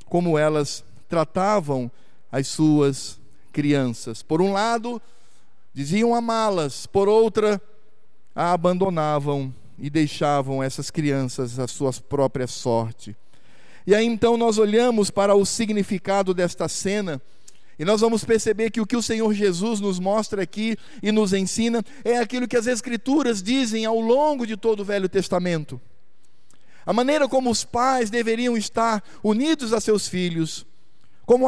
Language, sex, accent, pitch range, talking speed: Portuguese, male, Brazilian, 170-230 Hz, 140 wpm